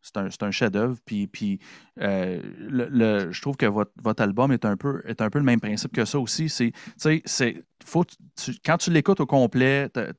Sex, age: male, 30-49